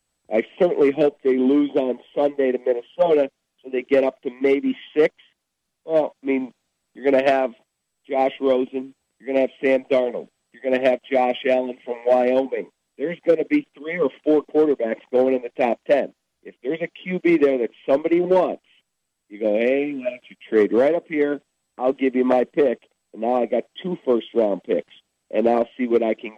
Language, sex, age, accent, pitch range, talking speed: English, male, 50-69, American, 120-150 Hz, 200 wpm